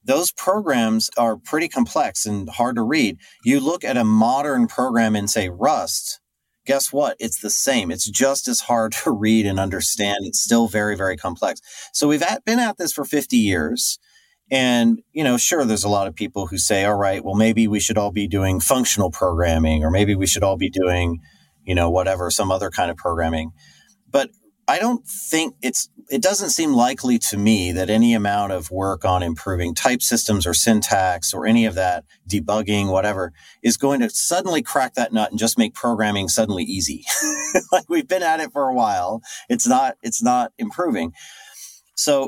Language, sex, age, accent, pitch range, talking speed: English, male, 30-49, American, 95-150 Hz, 195 wpm